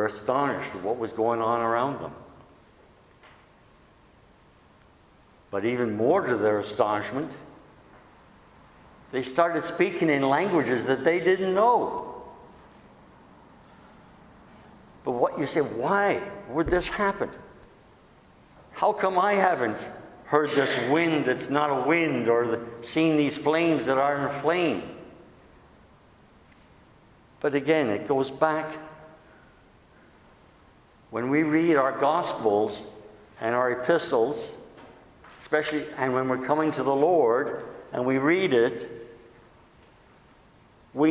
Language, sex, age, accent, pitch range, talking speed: English, male, 60-79, American, 125-160 Hz, 115 wpm